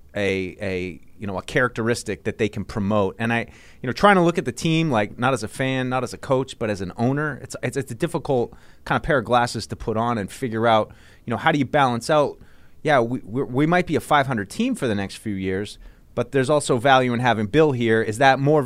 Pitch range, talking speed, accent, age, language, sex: 110-145 Hz, 265 wpm, American, 30-49, English, male